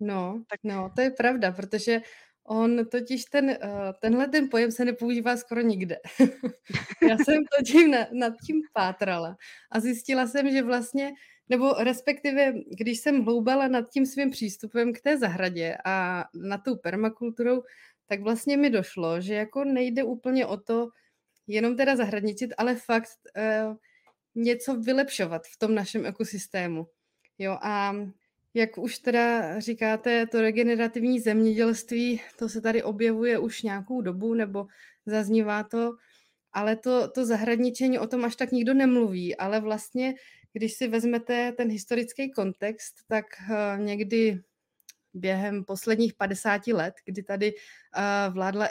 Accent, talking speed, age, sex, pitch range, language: native, 135 wpm, 20-39, female, 210-245 Hz, Czech